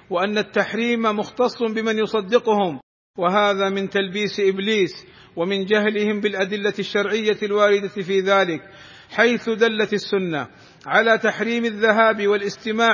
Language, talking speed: Arabic, 105 wpm